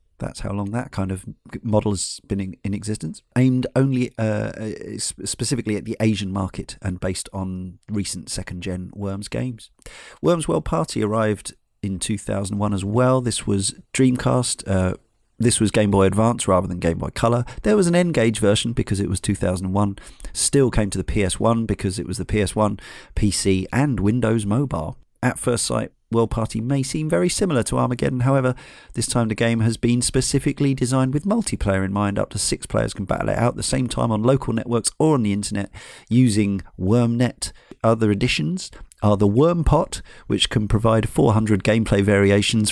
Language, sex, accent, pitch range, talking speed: English, male, British, 100-120 Hz, 180 wpm